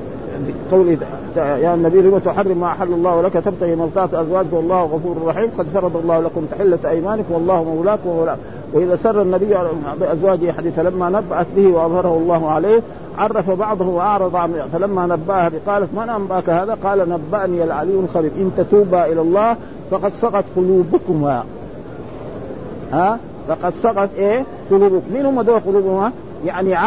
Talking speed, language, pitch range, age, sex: 145 wpm, Arabic, 170-205 Hz, 50-69, male